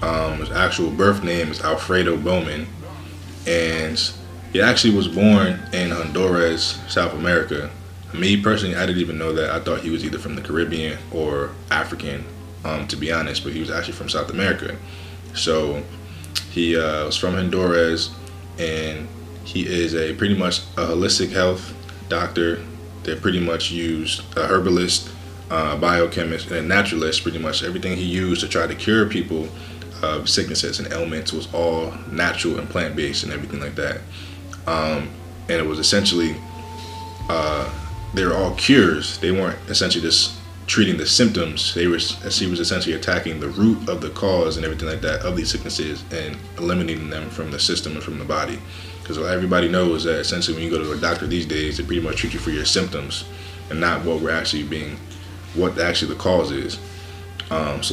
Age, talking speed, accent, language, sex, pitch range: 20-39, 180 wpm, American, English, male, 80-90 Hz